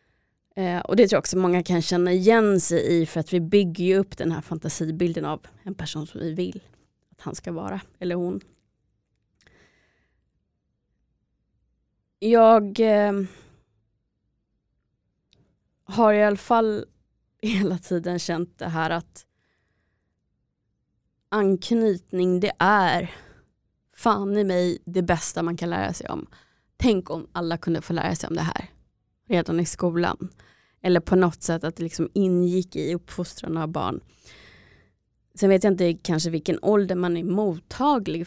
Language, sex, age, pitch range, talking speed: Swedish, female, 20-39, 165-195 Hz, 145 wpm